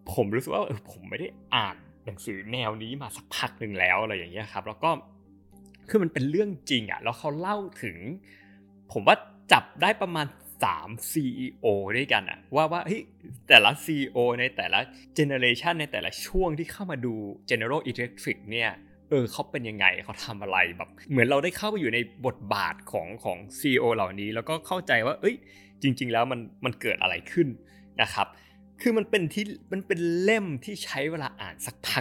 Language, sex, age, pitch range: Thai, male, 20-39, 105-165 Hz